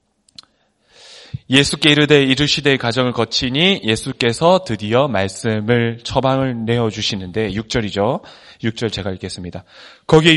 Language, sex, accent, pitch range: Korean, male, native, 115-165 Hz